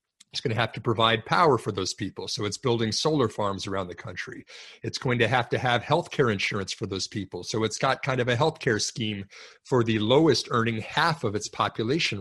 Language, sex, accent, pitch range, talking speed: English, male, American, 110-140 Hz, 230 wpm